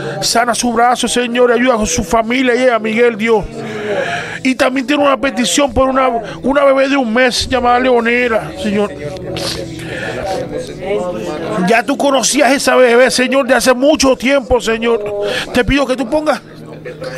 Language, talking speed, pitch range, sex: Spanish, 155 wpm, 215-255 Hz, male